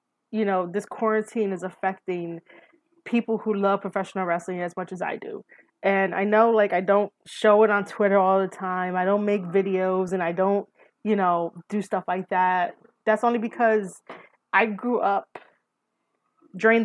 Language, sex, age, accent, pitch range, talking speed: English, female, 20-39, American, 185-220 Hz, 175 wpm